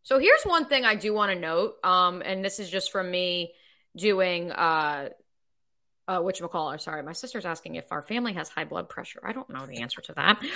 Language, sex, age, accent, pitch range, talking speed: English, female, 20-39, American, 175-245 Hz, 235 wpm